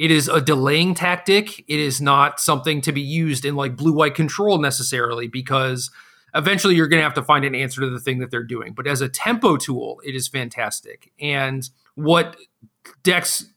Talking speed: 195 wpm